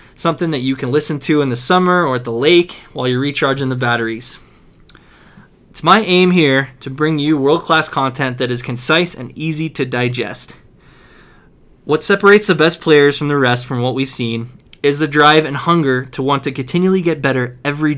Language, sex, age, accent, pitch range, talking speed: English, male, 20-39, American, 130-160 Hz, 195 wpm